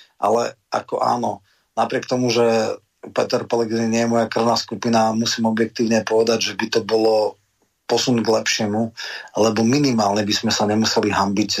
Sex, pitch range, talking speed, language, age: male, 105-115 Hz, 155 wpm, Slovak, 30-49